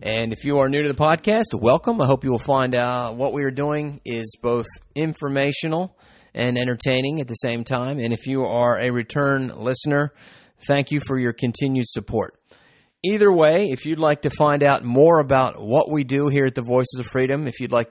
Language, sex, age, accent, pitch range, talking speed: English, male, 30-49, American, 110-135 Hz, 210 wpm